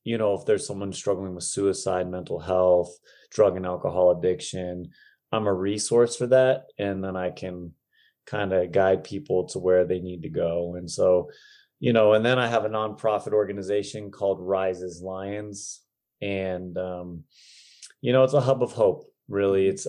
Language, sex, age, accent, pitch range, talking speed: English, male, 30-49, American, 95-110 Hz, 175 wpm